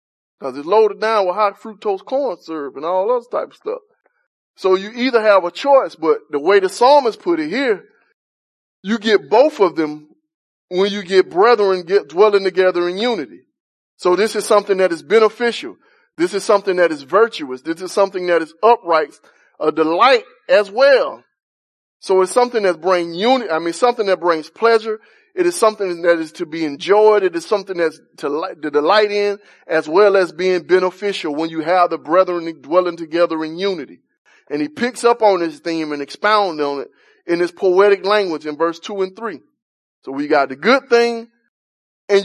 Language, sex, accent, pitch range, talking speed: English, male, American, 170-230 Hz, 190 wpm